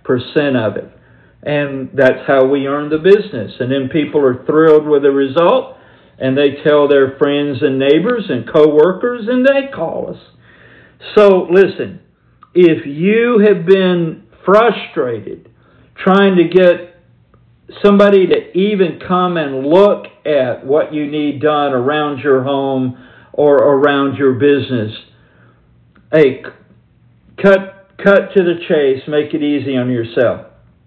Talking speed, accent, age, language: 135 wpm, American, 50-69, English